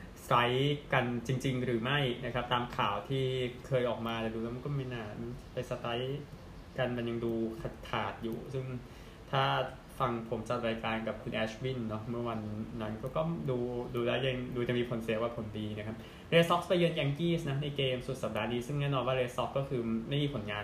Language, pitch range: Thai, 110-130 Hz